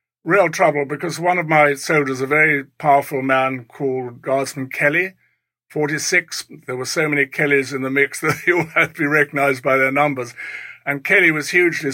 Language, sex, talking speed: English, male, 185 wpm